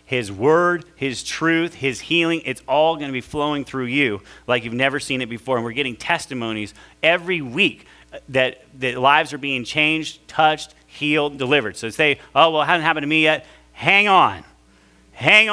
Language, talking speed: English, 185 wpm